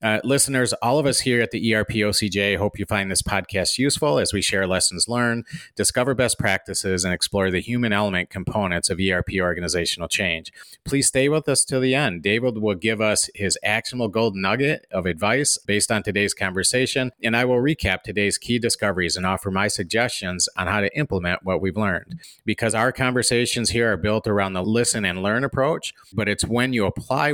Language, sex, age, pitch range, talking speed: English, male, 30-49, 95-115 Hz, 200 wpm